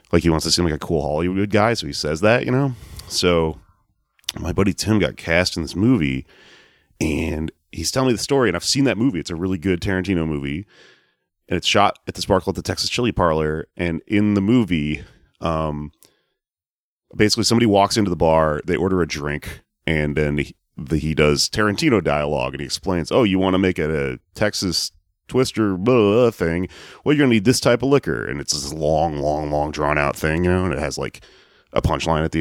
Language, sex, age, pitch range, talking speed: English, male, 30-49, 80-100 Hz, 215 wpm